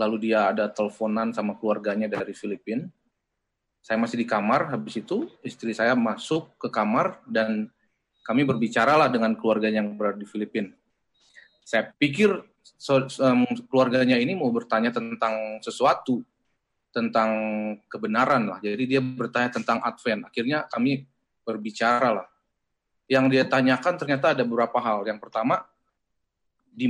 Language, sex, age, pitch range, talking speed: Indonesian, male, 20-39, 110-130 Hz, 135 wpm